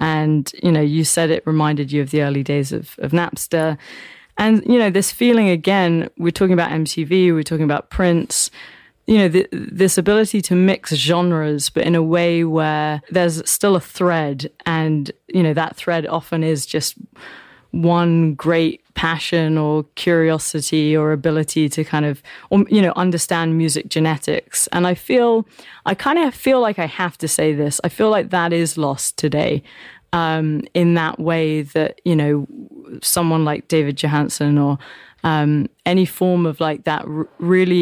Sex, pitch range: female, 150-175 Hz